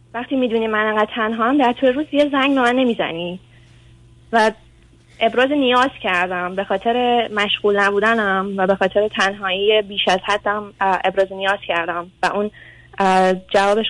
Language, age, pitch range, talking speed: Persian, 20-39, 190-230 Hz, 145 wpm